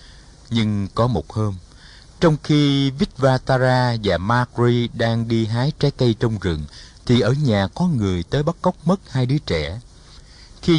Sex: male